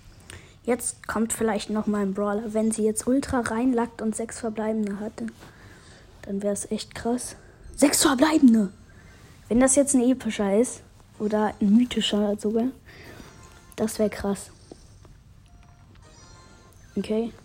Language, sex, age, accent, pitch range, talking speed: German, female, 20-39, German, 205-255 Hz, 130 wpm